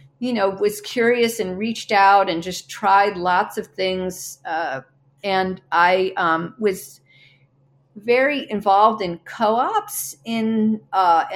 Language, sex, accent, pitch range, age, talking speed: English, female, American, 175-235 Hz, 50-69, 125 wpm